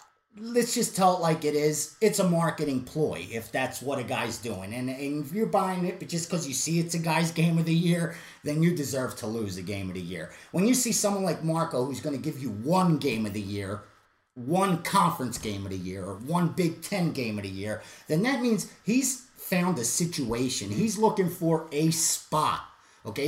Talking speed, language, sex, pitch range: 225 wpm, English, male, 125-175 Hz